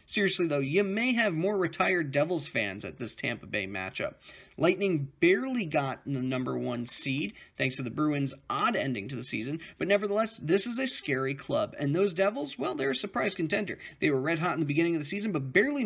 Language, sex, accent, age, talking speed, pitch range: English, male, American, 30-49, 215 wpm, 135-180 Hz